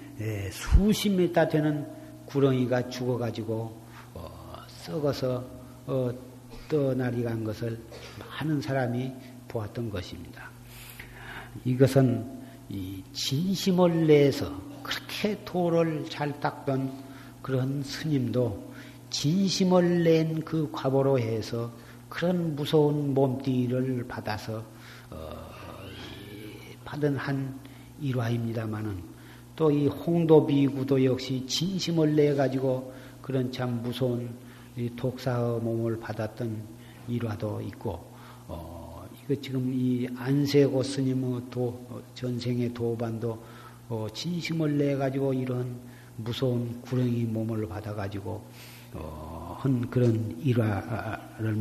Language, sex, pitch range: Korean, male, 115-135 Hz